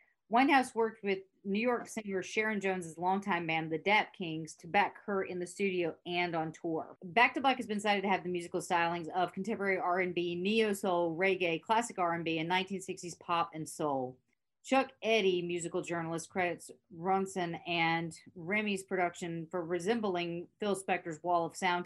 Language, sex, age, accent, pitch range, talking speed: English, female, 40-59, American, 170-200 Hz, 165 wpm